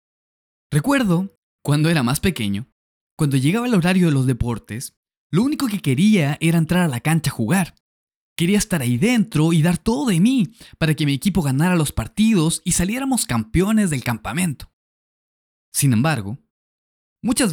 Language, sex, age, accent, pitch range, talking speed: Spanish, male, 20-39, Mexican, 120-190 Hz, 160 wpm